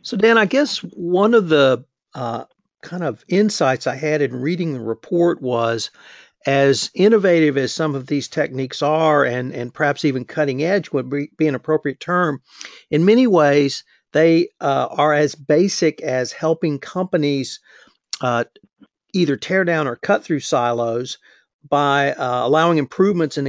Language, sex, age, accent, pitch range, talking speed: English, male, 50-69, American, 135-170 Hz, 160 wpm